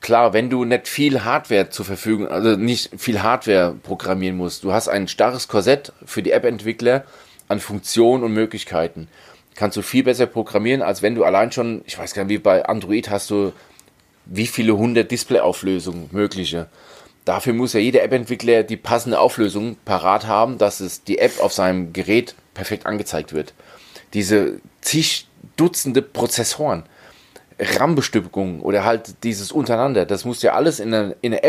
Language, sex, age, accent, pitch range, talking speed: German, male, 30-49, German, 100-125 Hz, 165 wpm